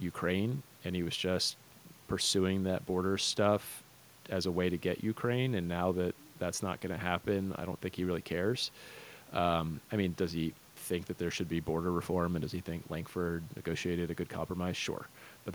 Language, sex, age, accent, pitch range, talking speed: English, male, 30-49, American, 80-95 Hz, 200 wpm